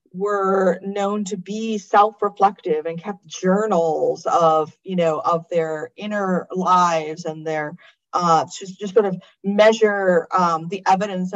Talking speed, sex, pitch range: 135 wpm, female, 175-210 Hz